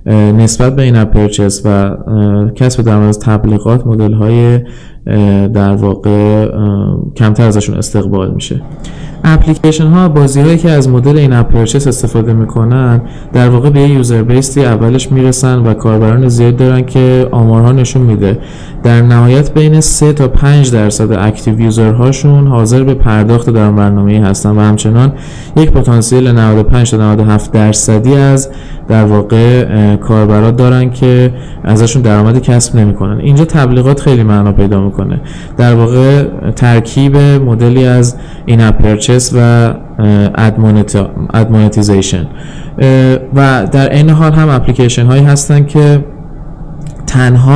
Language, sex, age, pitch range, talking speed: Persian, male, 20-39, 110-135 Hz, 130 wpm